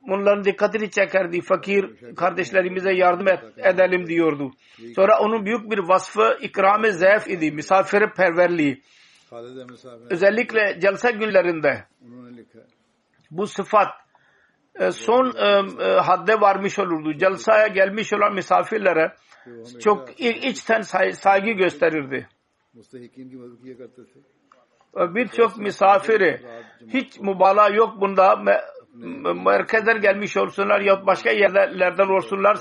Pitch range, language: 165-210 Hz, Turkish